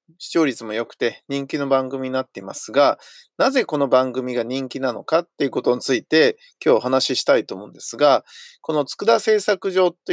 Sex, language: male, Japanese